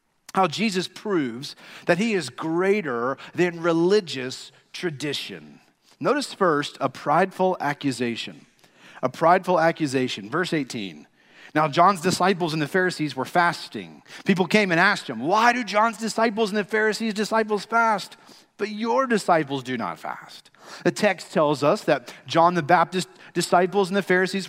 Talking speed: 145 wpm